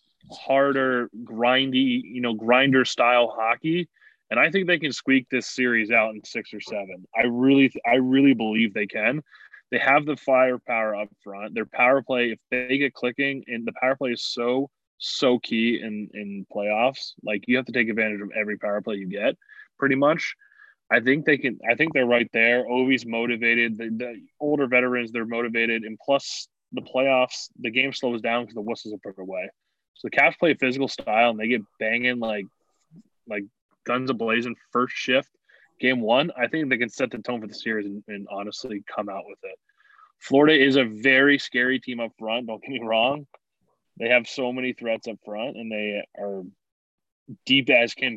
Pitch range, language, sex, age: 110-130 Hz, English, male, 20-39